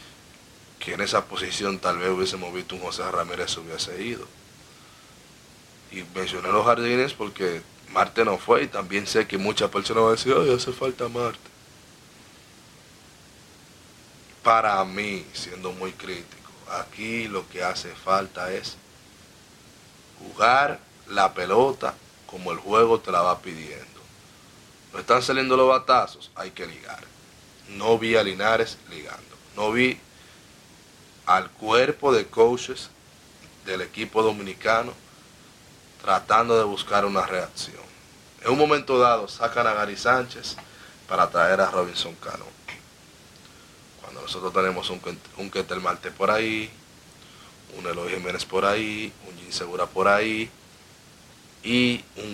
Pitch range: 95-120 Hz